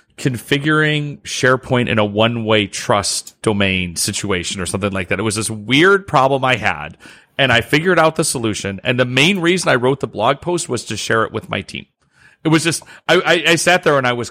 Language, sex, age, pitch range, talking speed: English, male, 30-49, 110-150 Hz, 220 wpm